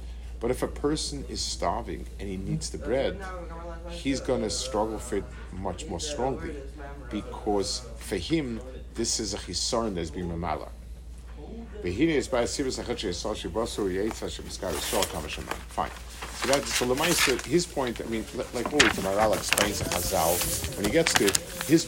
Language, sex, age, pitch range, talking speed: English, male, 50-69, 90-140 Hz, 130 wpm